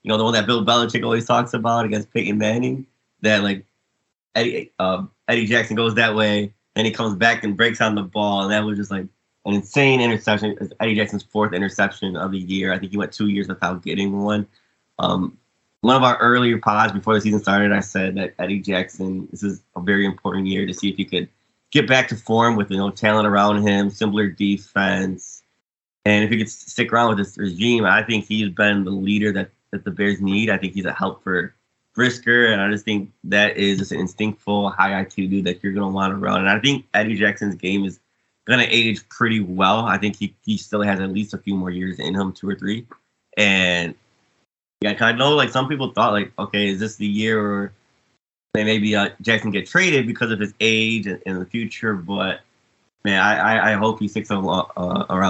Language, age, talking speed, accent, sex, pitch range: English, 20-39, 220 wpm, American, male, 100-115 Hz